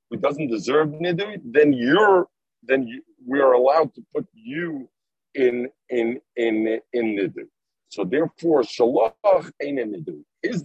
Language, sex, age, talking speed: English, male, 50-69, 145 wpm